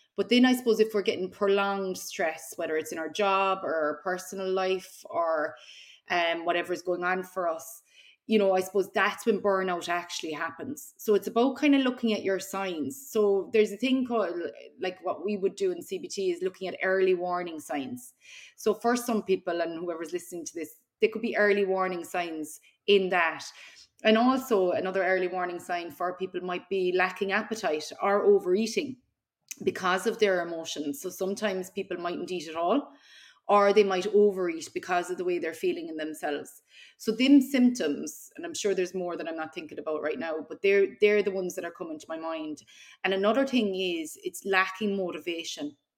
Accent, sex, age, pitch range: Irish, female, 30-49, 180-230 Hz